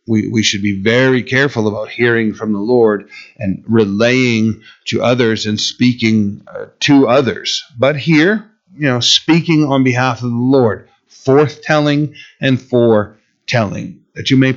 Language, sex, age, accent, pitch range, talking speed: English, male, 50-69, American, 115-155 Hz, 150 wpm